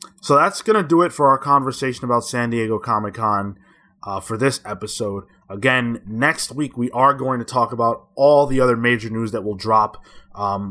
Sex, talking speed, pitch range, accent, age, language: male, 195 wpm, 105-130 Hz, American, 20-39, English